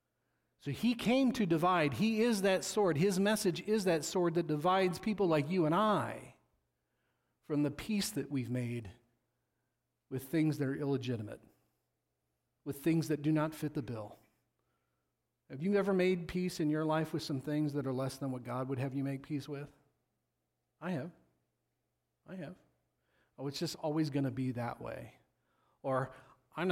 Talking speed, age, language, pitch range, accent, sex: 175 wpm, 40-59, English, 130-185 Hz, American, male